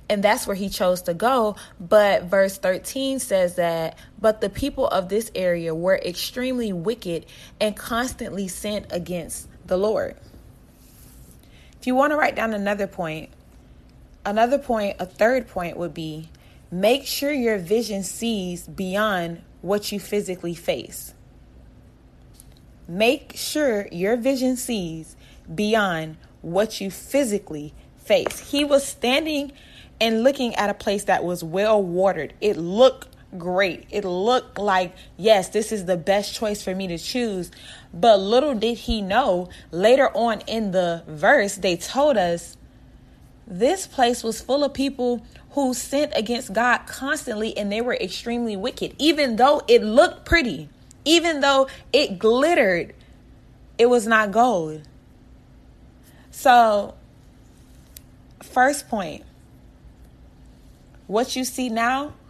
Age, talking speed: 20-39, 135 wpm